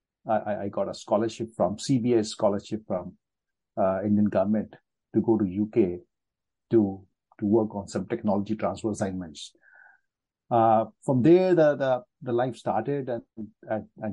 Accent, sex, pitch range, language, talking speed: Indian, male, 100-120 Hz, English, 145 wpm